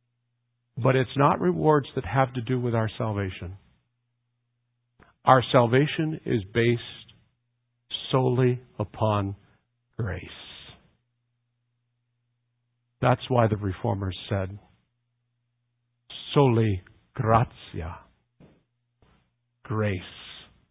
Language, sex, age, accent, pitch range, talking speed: English, male, 50-69, American, 120-150 Hz, 75 wpm